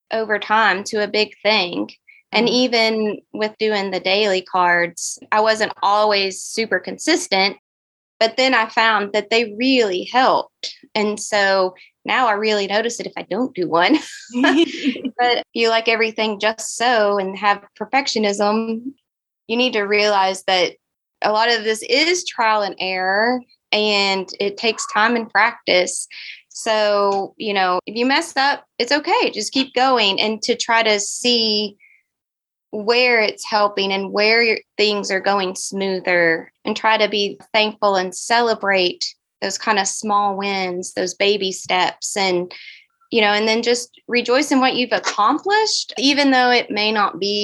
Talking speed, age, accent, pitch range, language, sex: 160 wpm, 20-39, American, 195-240 Hz, English, female